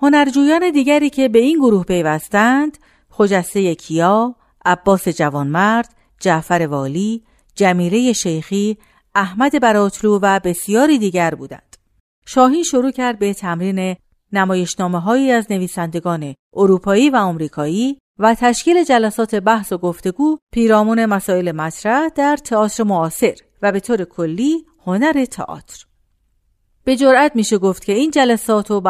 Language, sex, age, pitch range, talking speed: Persian, female, 50-69, 180-250 Hz, 125 wpm